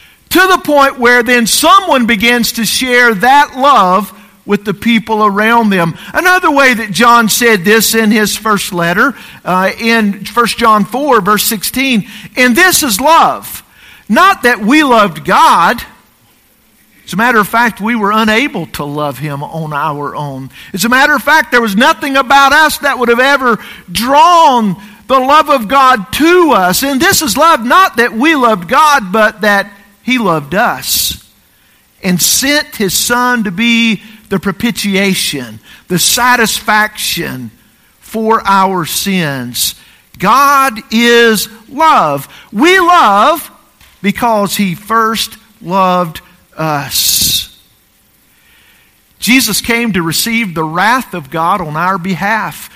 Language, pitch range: English, 195-265 Hz